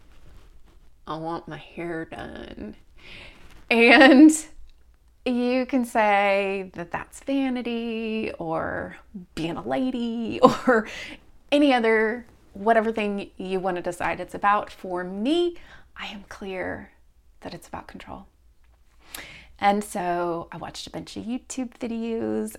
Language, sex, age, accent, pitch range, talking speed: English, female, 30-49, American, 175-250 Hz, 120 wpm